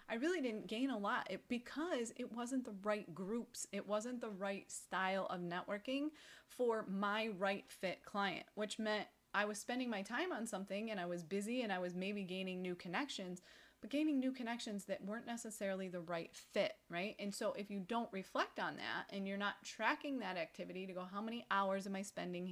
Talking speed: 205 wpm